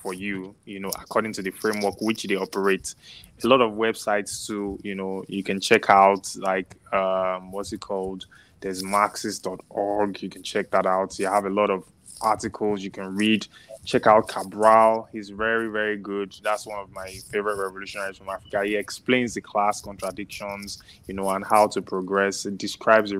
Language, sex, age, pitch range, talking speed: English, male, 20-39, 95-110 Hz, 185 wpm